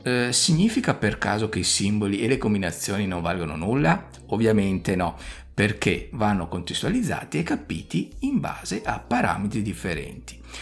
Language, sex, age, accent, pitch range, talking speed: Italian, male, 50-69, native, 90-125 Hz, 135 wpm